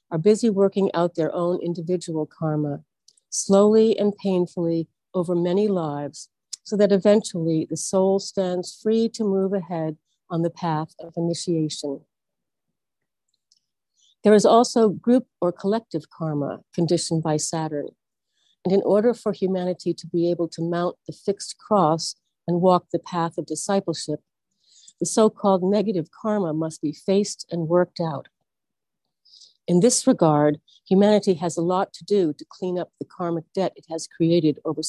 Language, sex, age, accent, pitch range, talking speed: English, female, 50-69, American, 160-200 Hz, 150 wpm